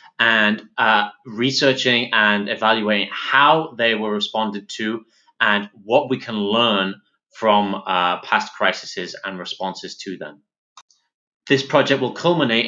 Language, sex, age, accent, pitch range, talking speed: English, male, 30-49, British, 105-130 Hz, 130 wpm